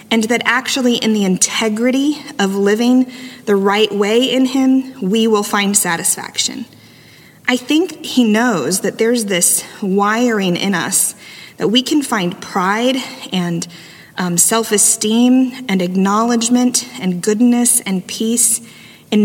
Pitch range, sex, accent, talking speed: 185-245 Hz, female, American, 130 wpm